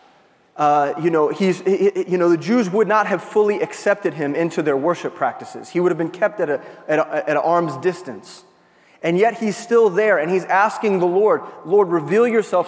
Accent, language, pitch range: American, English, 155-215 Hz